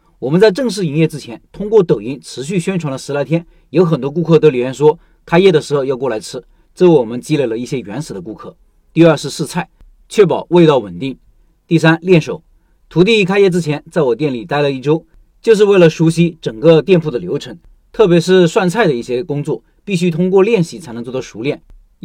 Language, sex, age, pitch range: Chinese, male, 40-59, 145-180 Hz